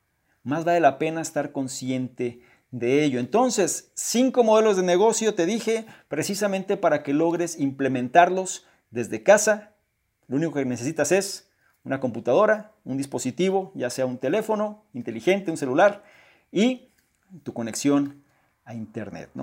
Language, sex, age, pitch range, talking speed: Spanish, male, 40-59, 135-200 Hz, 135 wpm